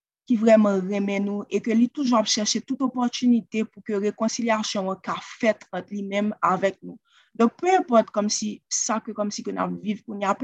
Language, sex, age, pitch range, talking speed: French, female, 30-49, 200-230 Hz, 190 wpm